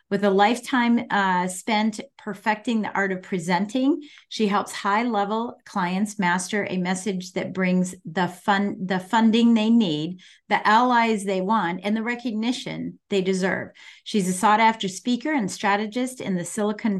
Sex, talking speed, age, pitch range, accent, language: female, 150 wpm, 40-59, 185-230 Hz, American, English